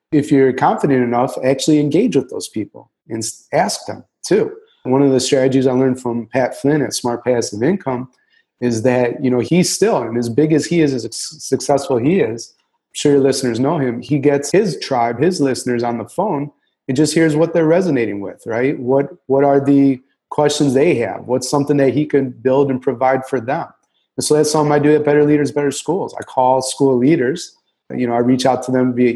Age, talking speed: 30-49, 215 wpm